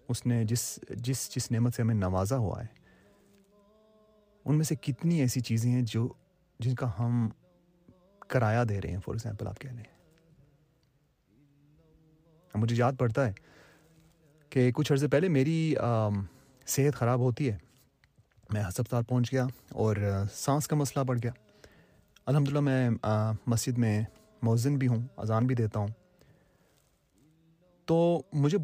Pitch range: 115-155 Hz